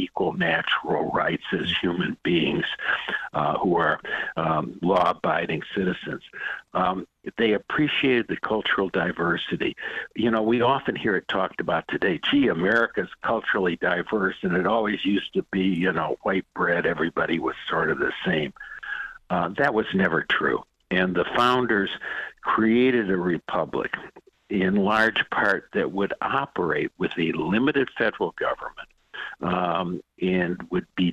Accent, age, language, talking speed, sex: American, 60-79, English, 140 wpm, male